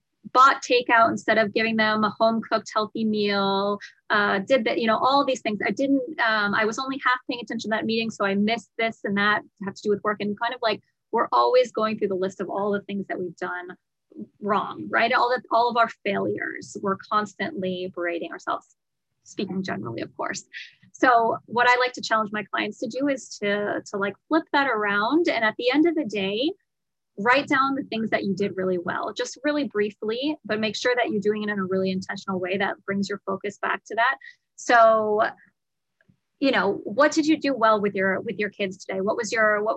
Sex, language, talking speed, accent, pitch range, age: female, English, 220 wpm, American, 195-240 Hz, 20-39